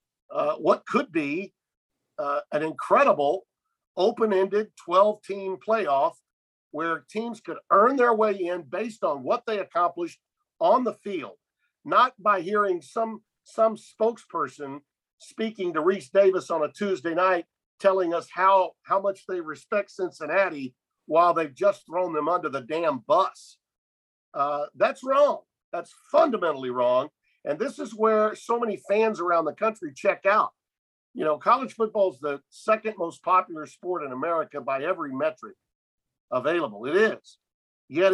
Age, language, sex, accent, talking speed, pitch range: 50-69, English, male, American, 145 wpm, 165-240 Hz